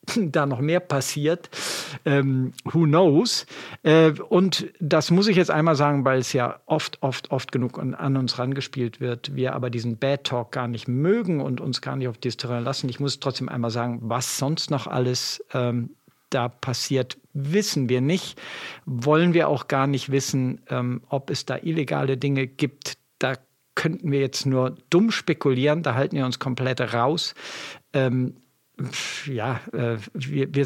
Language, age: German, 50-69